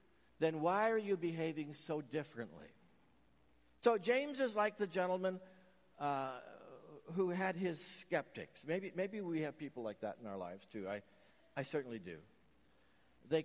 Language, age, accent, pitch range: English, 60-79, American, 125-175 Hz